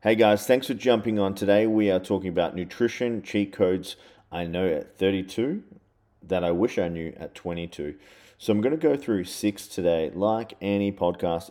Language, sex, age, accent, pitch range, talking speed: English, male, 30-49, Australian, 80-100 Hz, 180 wpm